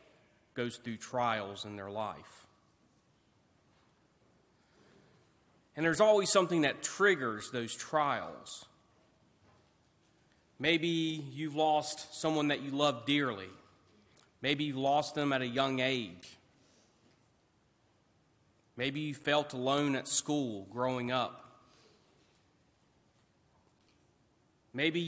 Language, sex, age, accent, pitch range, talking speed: English, male, 30-49, American, 110-150 Hz, 95 wpm